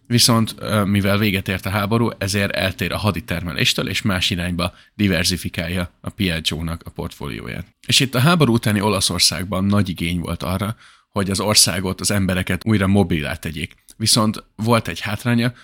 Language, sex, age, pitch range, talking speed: Hungarian, male, 30-49, 90-105 Hz, 155 wpm